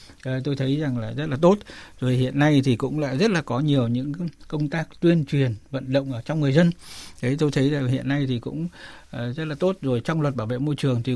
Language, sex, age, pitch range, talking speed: Vietnamese, male, 60-79, 125-150 Hz, 255 wpm